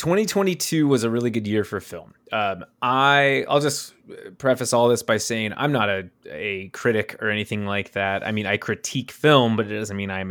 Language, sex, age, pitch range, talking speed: English, male, 20-39, 100-120 Hz, 210 wpm